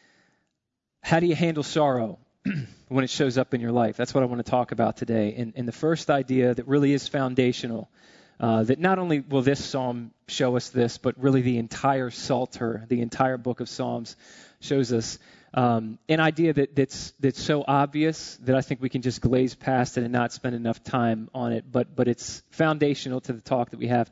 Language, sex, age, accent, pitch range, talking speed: English, male, 20-39, American, 120-140 Hz, 210 wpm